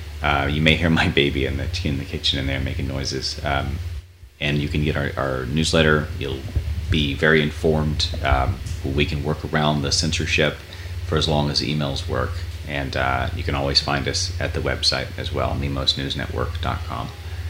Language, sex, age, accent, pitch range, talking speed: English, male, 30-49, American, 70-85 Hz, 180 wpm